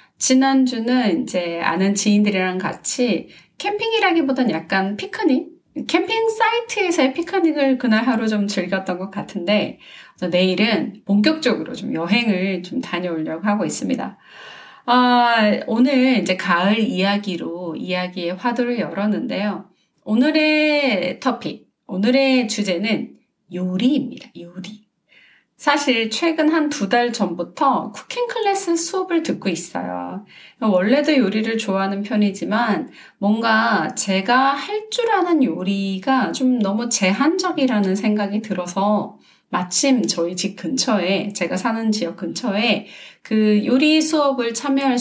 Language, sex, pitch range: Korean, female, 195-275 Hz